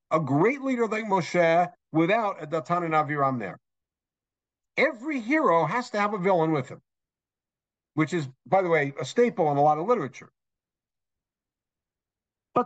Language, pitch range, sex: English, 145-190 Hz, male